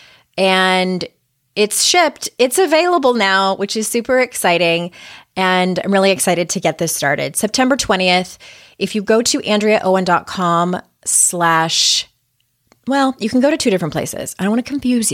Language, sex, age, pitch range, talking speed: English, female, 20-39, 170-220 Hz, 155 wpm